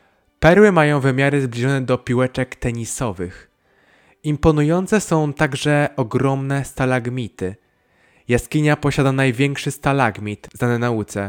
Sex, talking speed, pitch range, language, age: male, 95 wpm, 115-145 Hz, Polish, 20-39